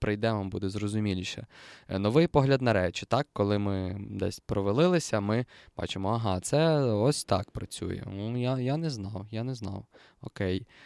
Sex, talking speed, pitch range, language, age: male, 150 wpm, 100-125 Hz, Ukrainian, 20-39